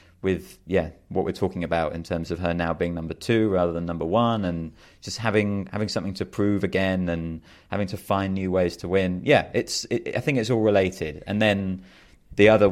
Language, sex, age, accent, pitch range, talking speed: English, male, 30-49, British, 85-105 Hz, 215 wpm